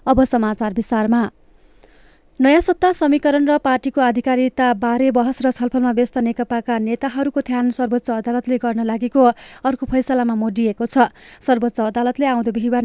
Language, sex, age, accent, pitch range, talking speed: English, female, 30-49, Indian, 235-265 Hz, 145 wpm